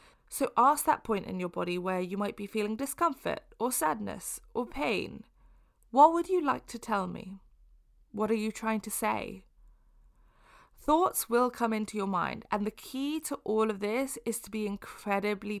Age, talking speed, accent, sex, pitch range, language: 20-39, 180 wpm, British, female, 205-255 Hz, English